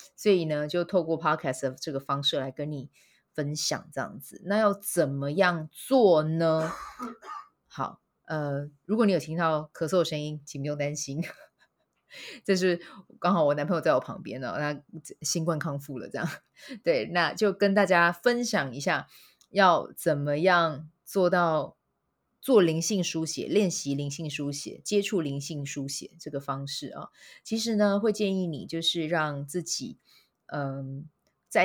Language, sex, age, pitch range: Chinese, female, 20-39, 145-185 Hz